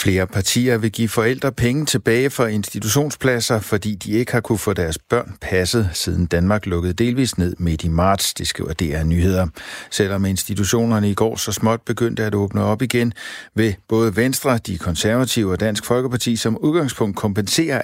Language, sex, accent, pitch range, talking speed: Danish, male, native, 95-115 Hz, 175 wpm